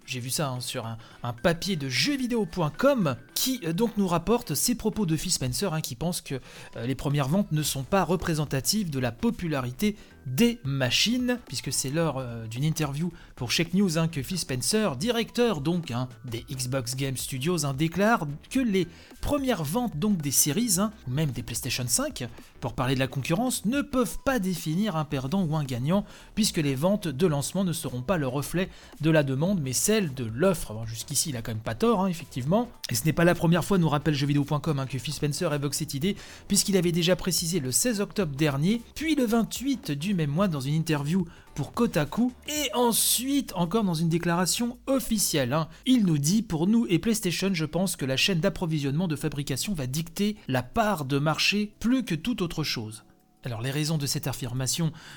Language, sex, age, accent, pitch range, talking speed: French, male, 30-49, French, 135-195 Hz, 205 wpm